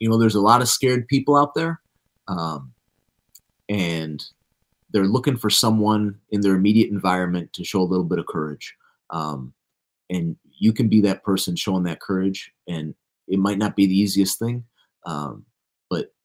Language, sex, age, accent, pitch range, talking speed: English, male, 30-49, American, 95-115 Hz, 175 wpm